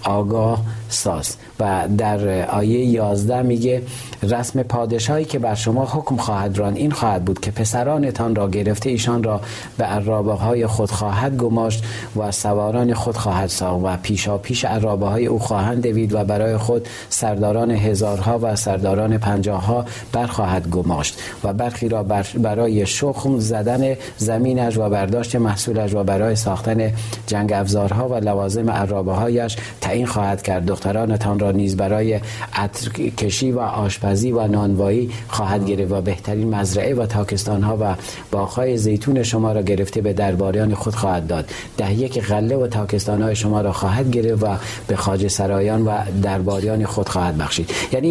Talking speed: 150 wpm